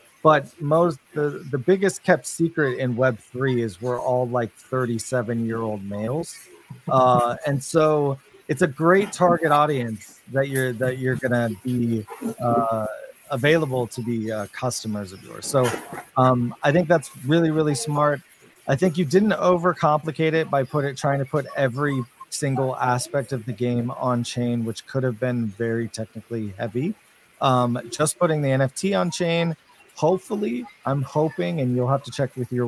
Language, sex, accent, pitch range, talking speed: English, male, American, 115-150 Hz, 170 wpm